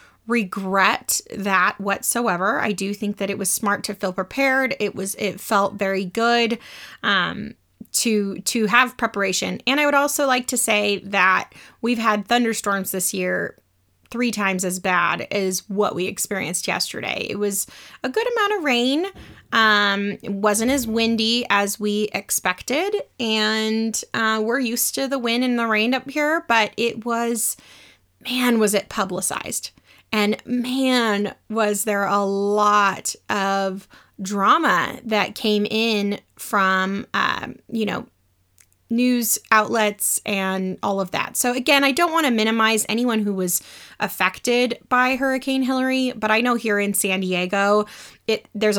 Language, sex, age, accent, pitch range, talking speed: English, female, 20-39, American, 200-240 Hz, 155 wpm